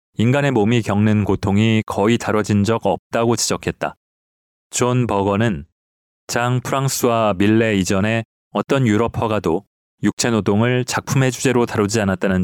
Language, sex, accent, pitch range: Korean, male, native, 100-125 Hz